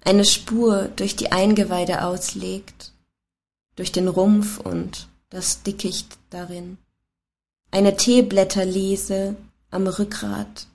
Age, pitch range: 20-39, 170-210 Hz